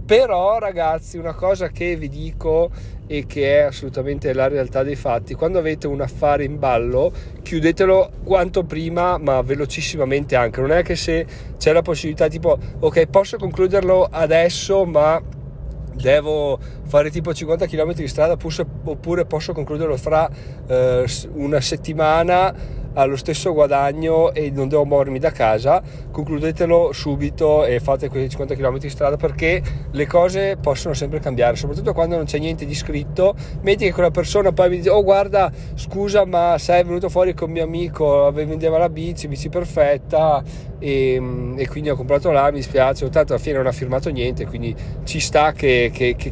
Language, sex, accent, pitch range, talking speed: Italian, male, native, 140-170 Hz, 165 wpm